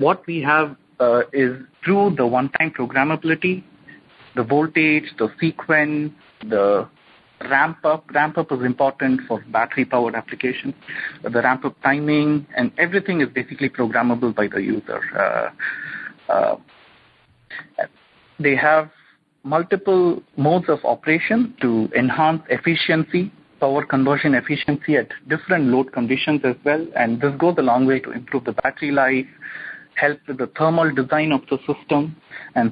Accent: Indian